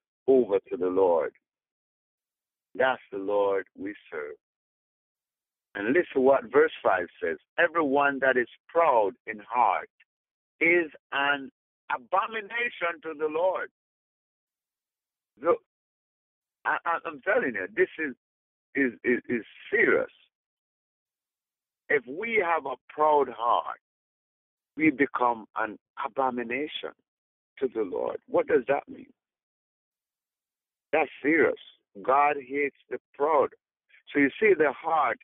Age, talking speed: 60-79, 110 wpm